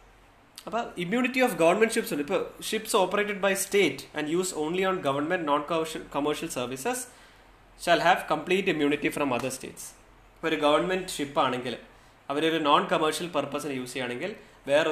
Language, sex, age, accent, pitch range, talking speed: Malayalam, male, 20-39, native, 145-190 Hz, 150 wpm